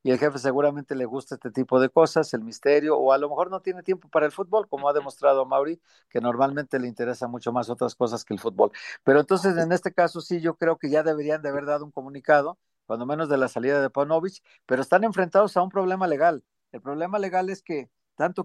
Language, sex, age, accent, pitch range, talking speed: Spanish, male, 50-69, Mexican, 130-165 Hz, 235 wpm